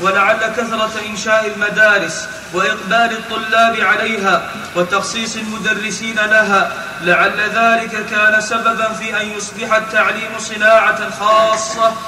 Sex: male